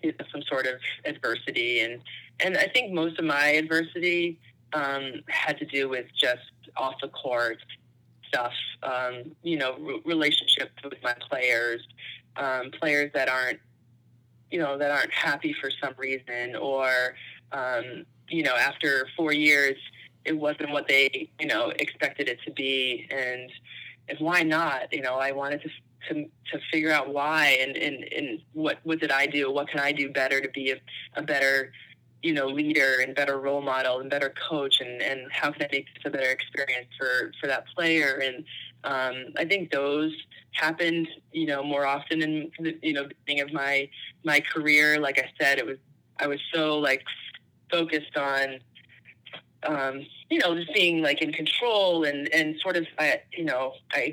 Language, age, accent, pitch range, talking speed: English, 20-39, American, 130-155 Hz, 185 wpm